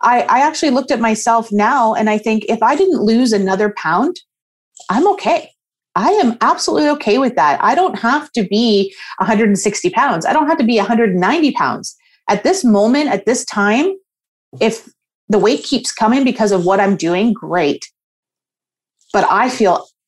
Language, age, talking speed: English, 30-49, 190 wpm